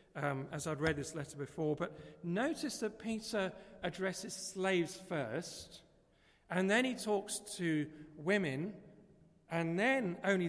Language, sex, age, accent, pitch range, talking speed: English, male, 40-59, British, 160-210 Hz, 135 wpm